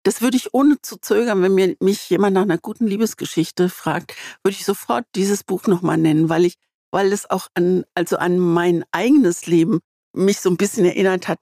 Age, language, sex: 60-79, German, female